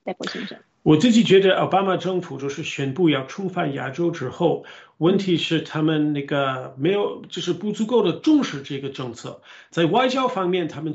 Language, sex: Chinese, male